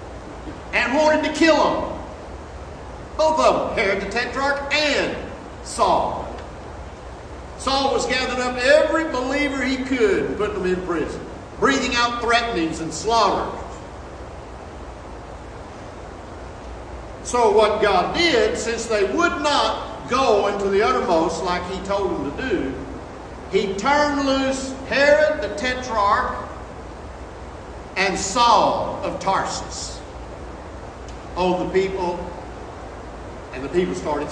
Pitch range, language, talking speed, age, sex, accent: 185-280 Hz, English, 115 wpm, 60-79, male, American